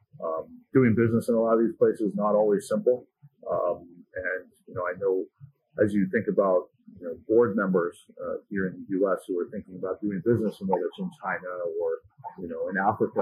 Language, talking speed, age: English, 215 wpm, 40-59